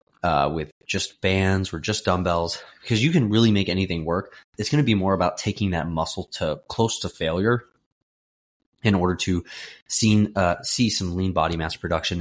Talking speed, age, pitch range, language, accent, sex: 185 wpm, 20-39, 80-100 Hz, English, American, male